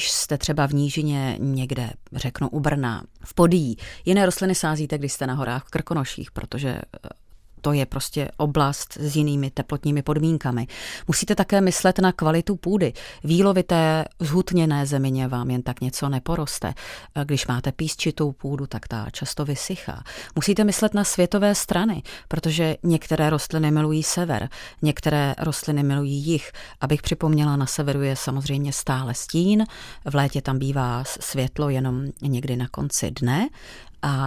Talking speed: 150 wpm